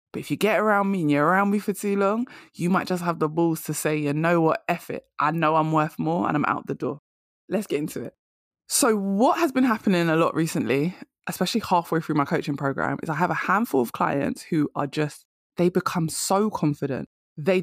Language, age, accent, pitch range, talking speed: English, 20-39, British, 150-185 Hz, 235 wpm